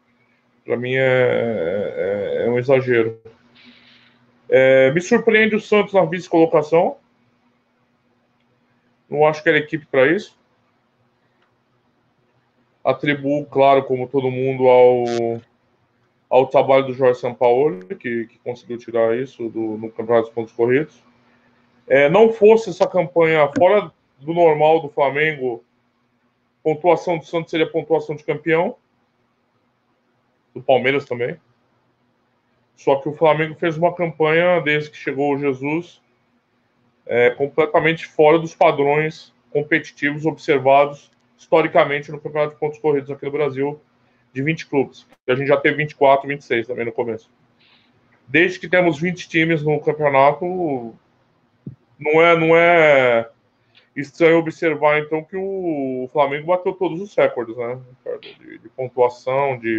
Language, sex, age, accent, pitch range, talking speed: Portuguese, male, 20-39, Brazilian, 125-160 Hz, 130 wpm